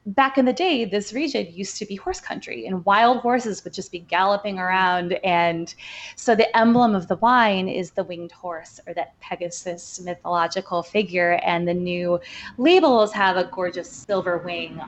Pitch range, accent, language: 180-245 Hz, American, English